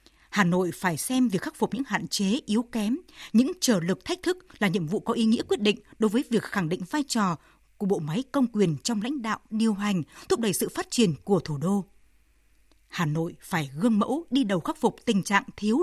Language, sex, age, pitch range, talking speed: Vietnamese, female, 20-39, 185-245 Hz, 235 wpm